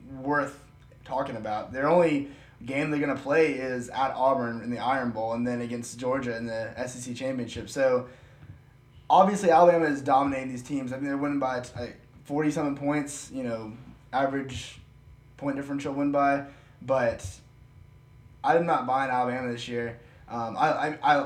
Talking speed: 155 wpm